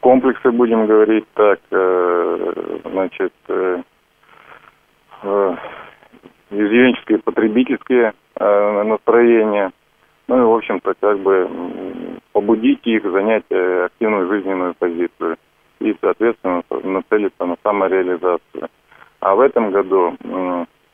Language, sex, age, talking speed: Russian, male, 30-49, 95 wpm